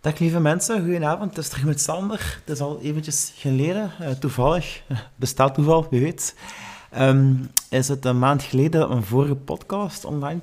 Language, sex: Dutch, male